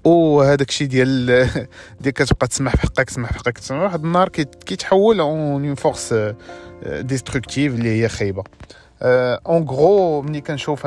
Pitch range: 130-175 Hz